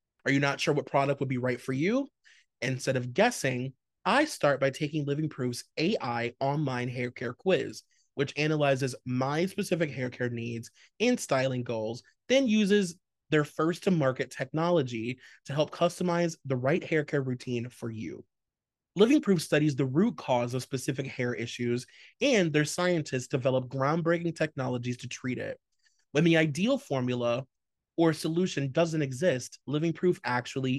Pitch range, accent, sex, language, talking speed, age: 130-170 Hz, American, male, English, 160 wpm, 30-49